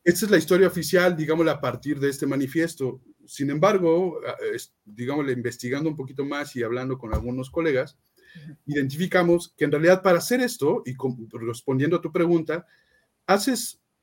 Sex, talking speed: male, 155 wpm